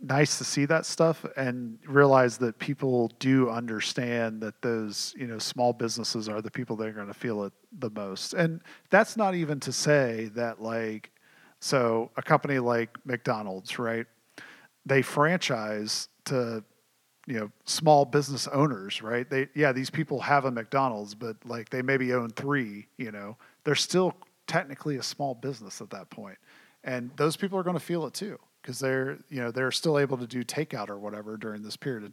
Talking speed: 190 wpm